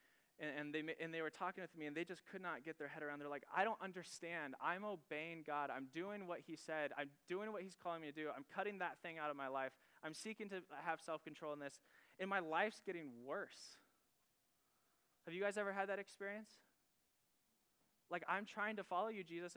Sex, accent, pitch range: male, American, 150-190 Hz